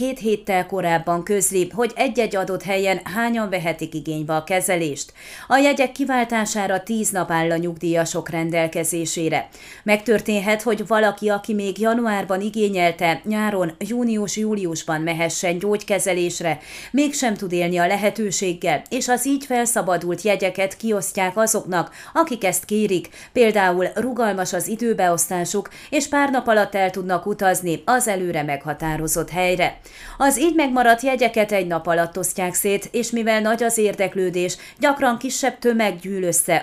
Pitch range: 175-225 Hz